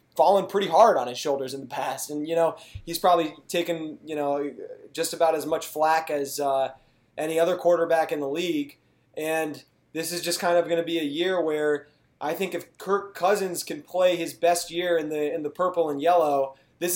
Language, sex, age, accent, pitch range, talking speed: English, male, 20-39, American, 145-170 Hz, 210 wpm